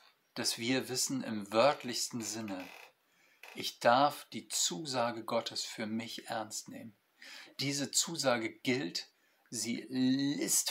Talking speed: 110 wpm